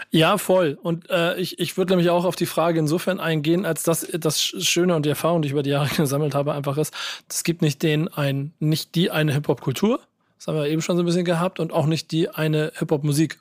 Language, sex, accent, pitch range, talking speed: German, male, German, 155-175 Hz, 250 wpm